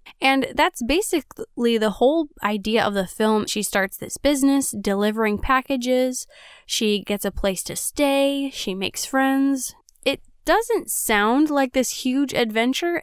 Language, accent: English, American